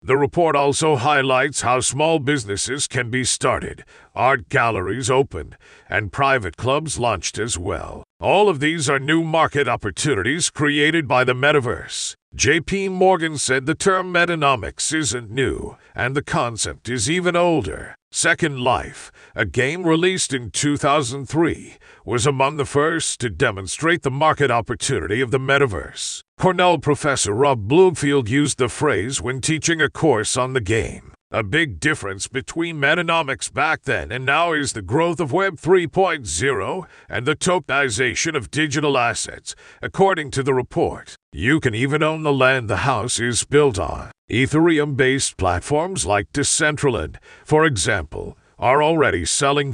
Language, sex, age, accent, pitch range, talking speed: English, male, 50-69, American, 125-160 Hz, 145 wpm